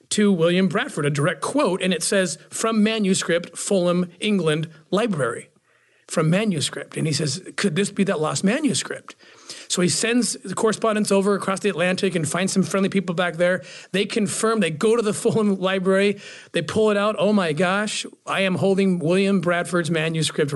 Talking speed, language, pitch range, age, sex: 180 wpm, English, 165-200 Hz, 40-59, male